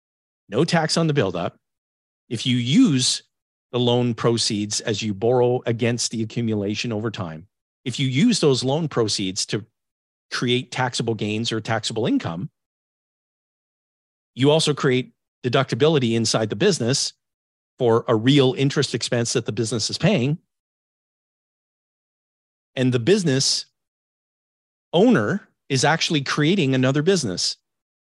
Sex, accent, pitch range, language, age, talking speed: male, American, 110-150 Hz, English, 40-59, 125 wpm